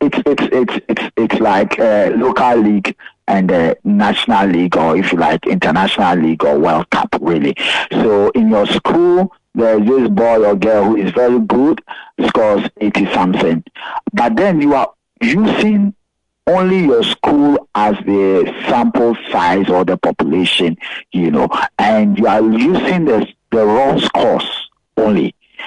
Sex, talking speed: male, 160 wpm